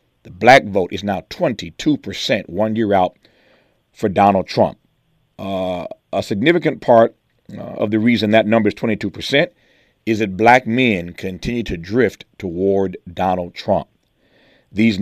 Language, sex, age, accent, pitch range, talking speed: English, male, 40-59, American, 105-125 Hz, 150 wpm